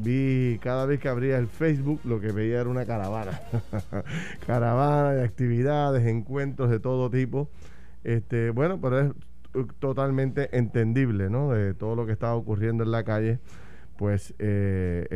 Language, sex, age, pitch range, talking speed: Spanish, male, 30-49, 110-140 Hz, 150 wpm